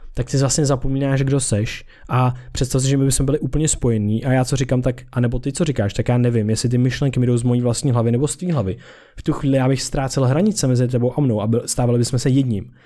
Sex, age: male, 20-39